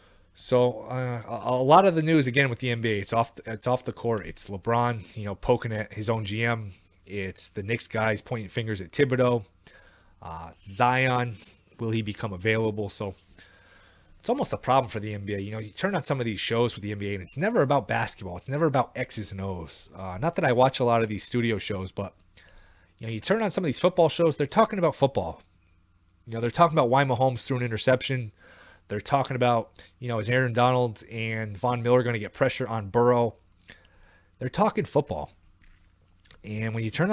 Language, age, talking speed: English, 20-39, 215 wpm